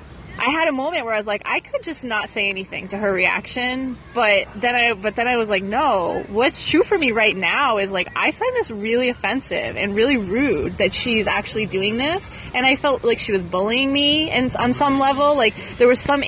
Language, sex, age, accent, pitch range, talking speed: English, female, 20-39, American, 205-260 Hz, 230 wpm